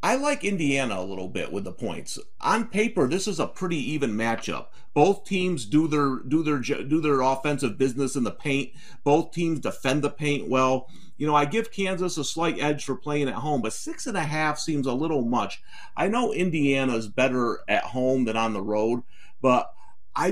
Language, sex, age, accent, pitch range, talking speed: English, male, 40-59, American, 115-155 Hz, 205 wpm